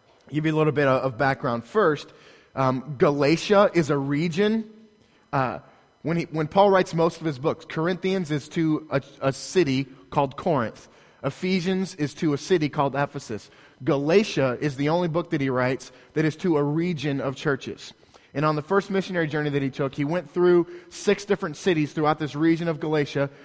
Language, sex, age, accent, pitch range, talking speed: English, male, 30-49, American, 140-170 Hz, 185 wpm